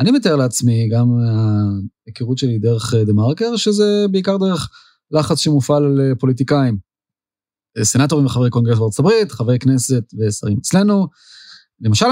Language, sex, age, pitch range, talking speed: Hebrew, male, 30-49, 120-170 Hz, 125 wpm